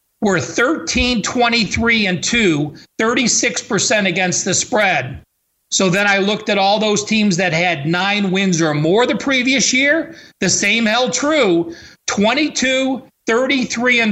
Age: 40-59